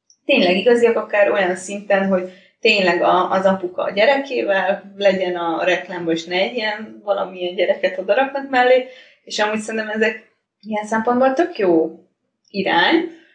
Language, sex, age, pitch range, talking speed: Hungarian, female, 20-39, 185-225 Hz, 145 wpm